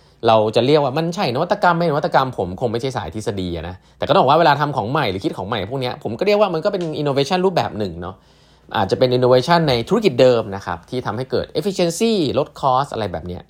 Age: 20-39